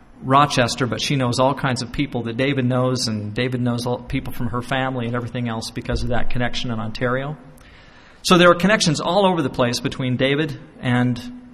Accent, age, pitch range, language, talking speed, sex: American, 40-59, 125-160 Hz, English, 200 wpm, male